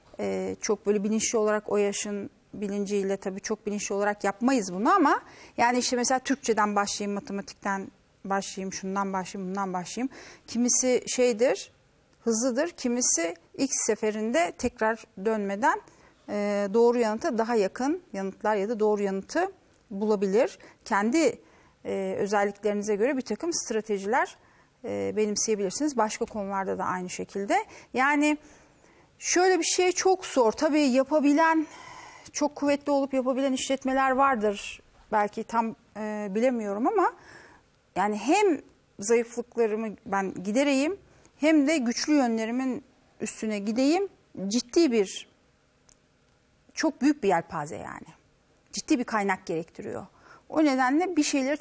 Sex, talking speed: female, 120 wpm